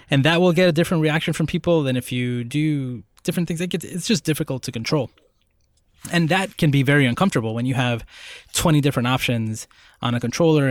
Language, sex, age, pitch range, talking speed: English, male, 20-39, 120-160 Hz, 205 wpm